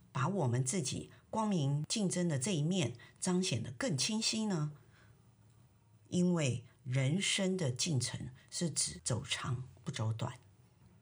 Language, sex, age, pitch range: Chinese, female, 50-69, 125-165 Hz